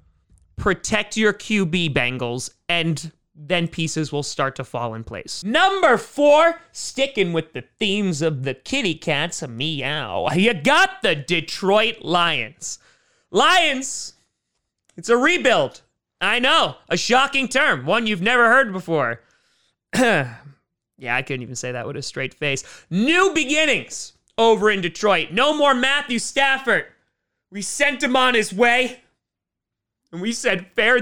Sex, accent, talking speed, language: male, American, 140 wpm, English